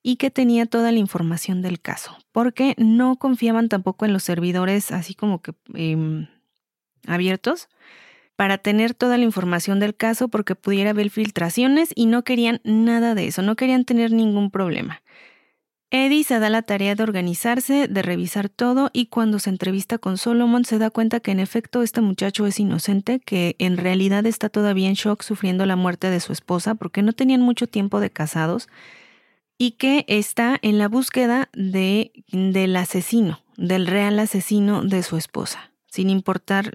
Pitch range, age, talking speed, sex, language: 190-235 Hz, 30-49, 170 wpm, female, Spanish